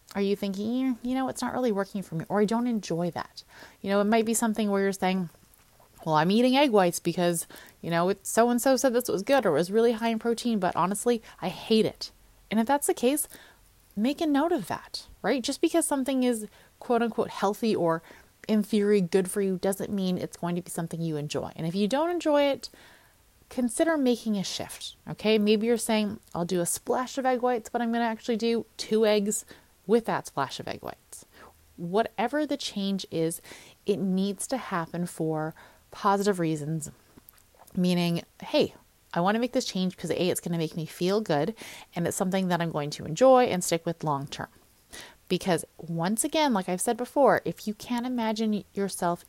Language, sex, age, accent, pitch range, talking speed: English, female, 20-39, American, 175-240 Hz, 205 wpm